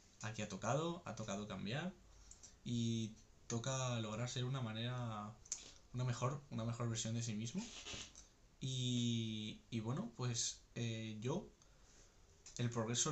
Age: 20-39